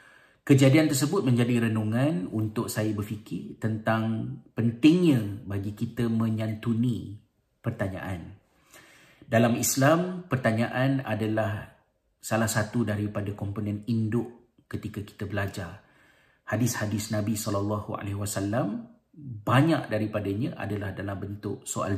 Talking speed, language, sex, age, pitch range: 100 wpm, Malay, male, 40-59, 100-115 Hz